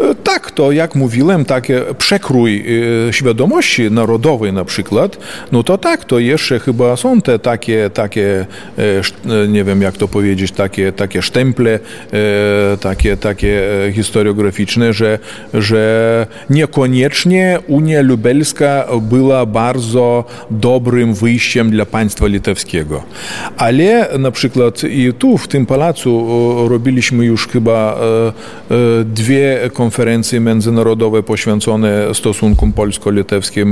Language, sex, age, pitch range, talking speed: Polish, male, 40-59, 110-130 Hz, 105 wpm